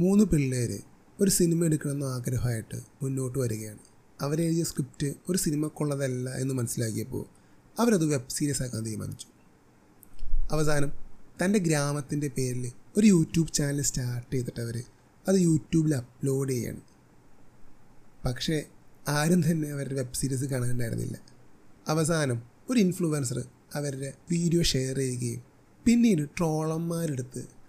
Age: 30-49